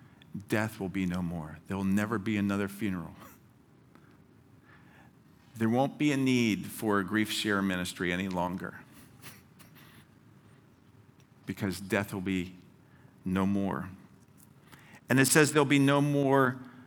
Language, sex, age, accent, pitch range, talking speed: English, male, 50-69, American, 105-140 Hz, 130 wpm